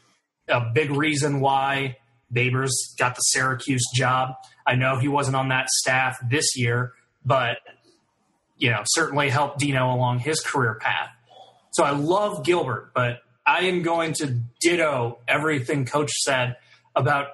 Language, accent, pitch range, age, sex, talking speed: English, American, 125-155 Hz, 30-49, male, 145 wpm